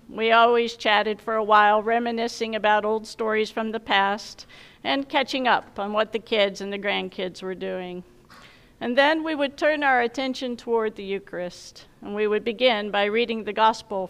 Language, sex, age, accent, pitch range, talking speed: English, female, 50-69, American, 190-235 Hz, 185 wpm